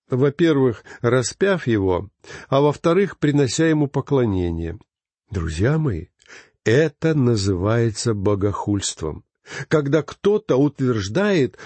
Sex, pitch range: male, 115-160 Hz